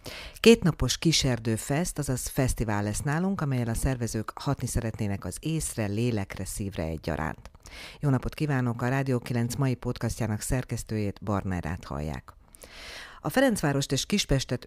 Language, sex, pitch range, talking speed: Hungarian, female, 110-135 Hz, 140 wpm